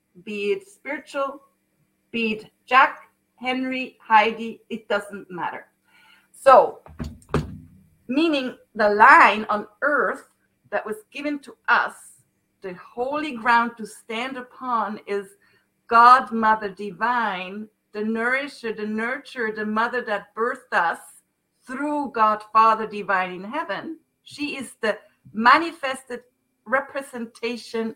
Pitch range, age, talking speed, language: 195-245 Hz, 50-69, 110 wpm, English